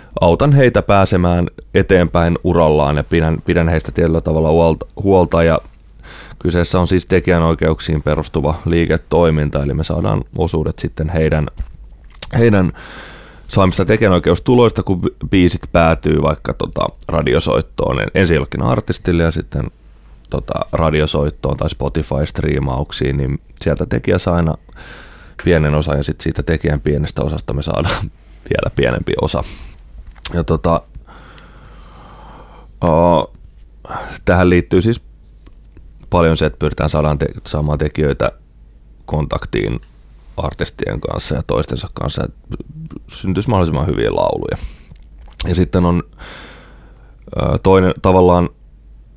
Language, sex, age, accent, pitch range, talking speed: Finnish, male, 20-39, native, 75-90 Hz, 110 wpm